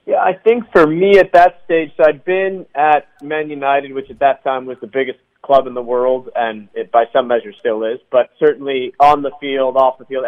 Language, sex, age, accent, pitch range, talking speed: English, male, 30-49, American, 130-155 Hz, 235 wpm